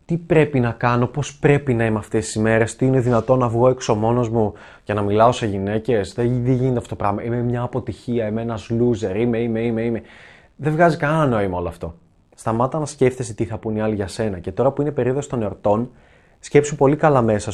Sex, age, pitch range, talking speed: male, 20-39, 110-145 Hz, 230 wpm